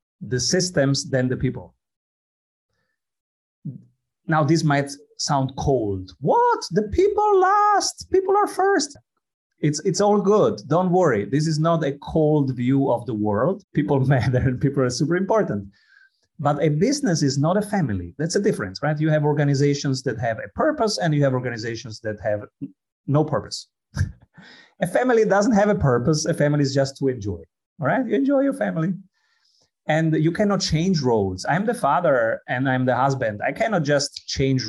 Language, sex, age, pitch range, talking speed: English, male, 30-49, 120-175 Hz, 170 wpm